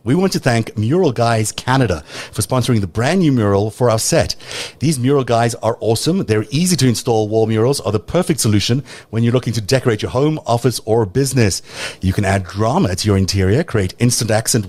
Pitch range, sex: 105-135 Hz, male